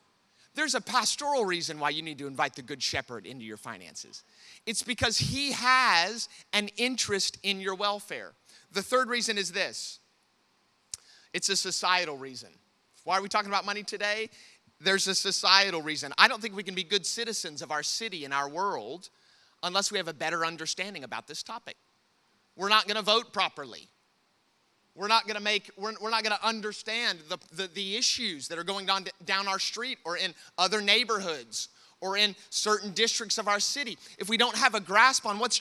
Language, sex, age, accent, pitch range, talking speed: English, male, 30-49, American, 180-230 Hz, 190 wpm